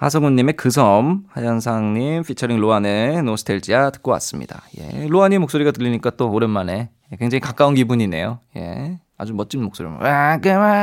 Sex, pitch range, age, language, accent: male, 115-170 Hz, 20-39, Korean, native